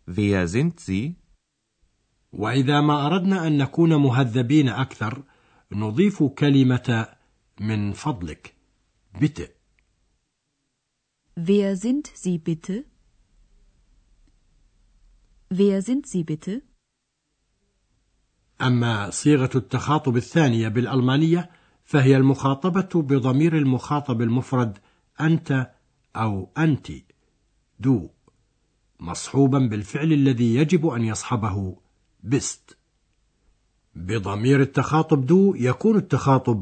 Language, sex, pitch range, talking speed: Arabic, male, 115-155 Hz, 60 wpm